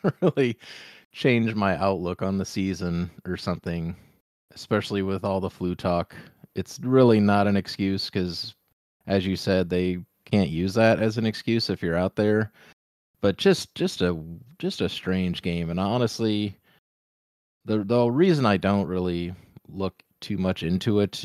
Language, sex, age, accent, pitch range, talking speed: English, male, 30-49, American, 90-110 Hz, 160 wpm